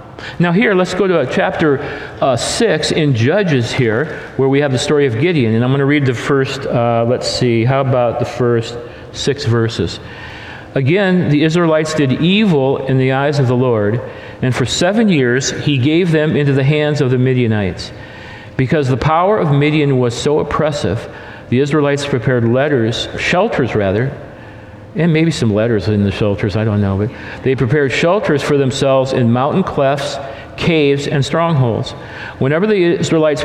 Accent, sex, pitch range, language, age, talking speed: American, male, 125-160 Hz, English, 50-69, 175 wpm